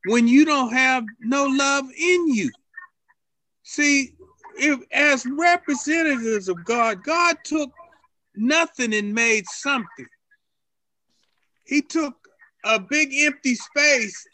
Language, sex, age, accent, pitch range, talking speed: English, male, 40-59, American, 225-290 Hz, 110 wpm